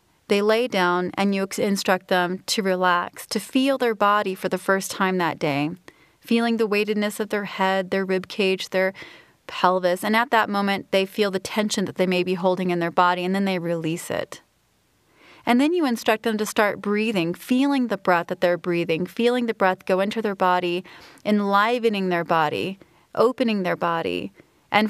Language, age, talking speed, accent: English, 30-49, 190 wpm, American